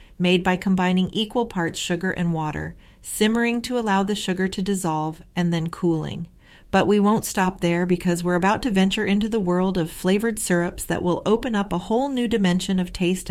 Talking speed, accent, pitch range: 200 wpm, American, 170-205 Hz